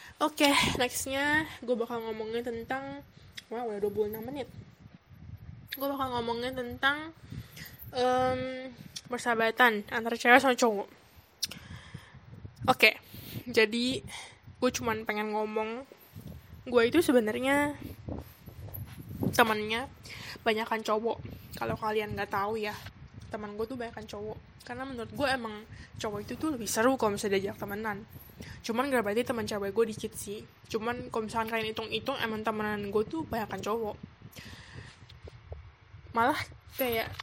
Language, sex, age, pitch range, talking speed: Indonesian, female, 10-29, 215-245 Hz, 125 wpm